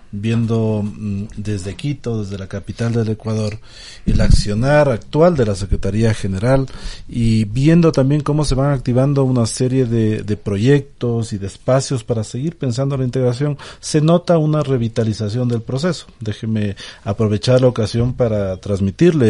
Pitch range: 110-145 Hz